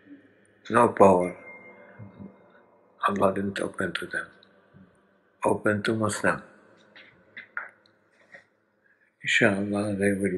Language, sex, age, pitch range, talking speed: Indonesian, male, 60-79, 95-105 Hz, 75 wpm